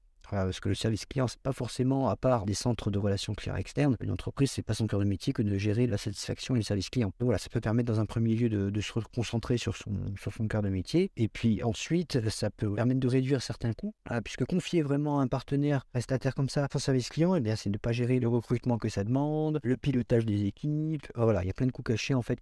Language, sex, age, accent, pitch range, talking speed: French, male, 50-69, French, 105-135 Hz, 280 wpm